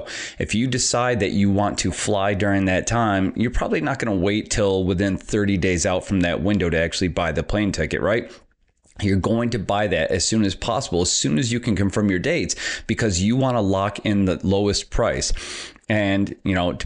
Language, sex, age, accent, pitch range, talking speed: English, male, 30-49, American, 95-110 Hz, 215 wpm